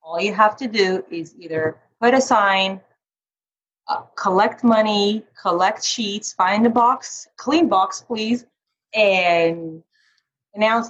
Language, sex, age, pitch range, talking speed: English, female, 30-49, 175-230 Hz, 125 wpm